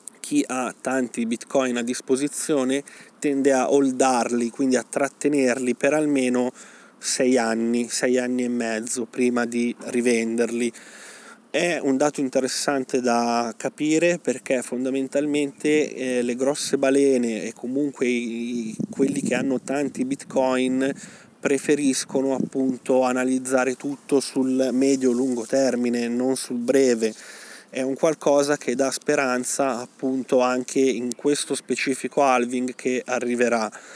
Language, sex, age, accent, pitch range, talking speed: Italian, male, 20-39, native, 125-140 Hz, 120 wpm